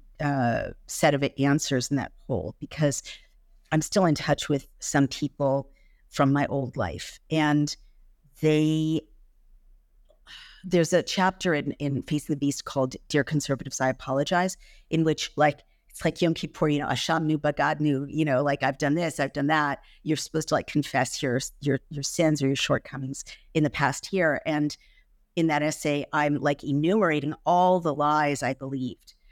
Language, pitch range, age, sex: English, 135-155 Hz, 50-69, female